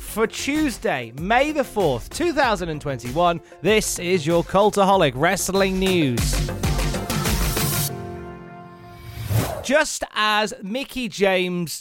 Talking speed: 80 wpm